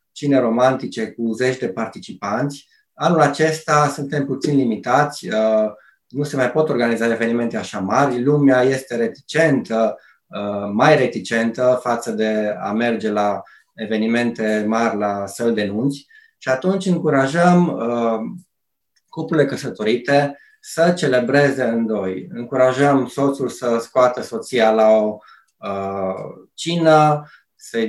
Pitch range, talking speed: 115-145 Hz, 110 wpm